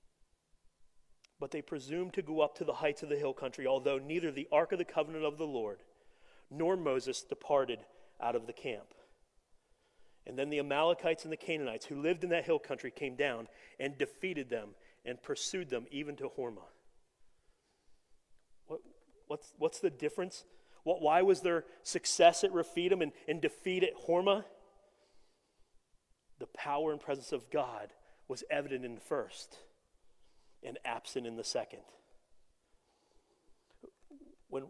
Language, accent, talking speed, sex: English, American, 150 wpm, male